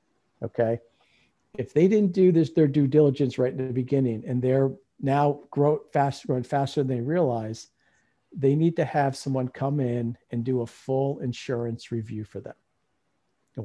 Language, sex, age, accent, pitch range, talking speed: English, male, 50-69, American, 115-140 Hz, 170 wpm